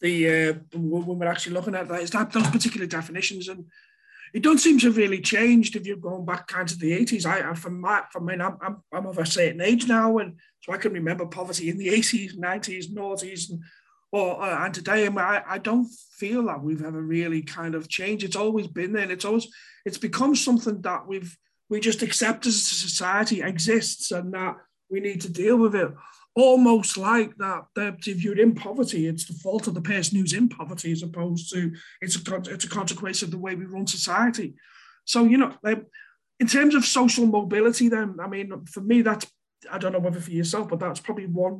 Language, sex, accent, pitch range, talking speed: English, male, British, 175-220 Hz, 220 wpm